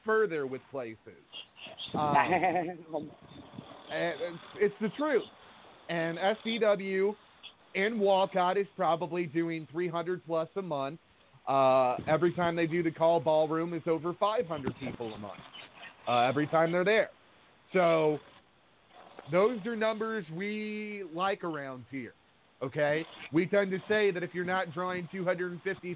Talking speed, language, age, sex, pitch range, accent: 130 wpm, English, 30-49, male, 155-195 Hz, American